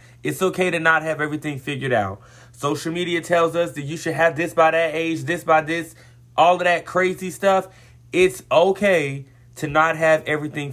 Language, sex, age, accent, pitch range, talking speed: English, male, 30-49, American, 120-160 Hz, 190 wpm